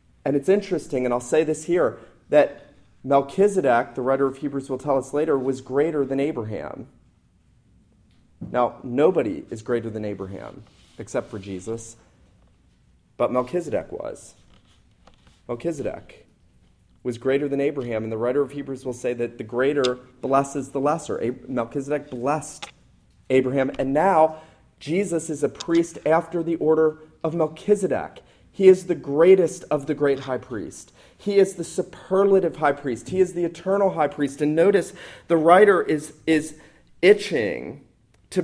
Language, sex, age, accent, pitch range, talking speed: English, male, 30-49, American, 135-180 Hz, 150 wpm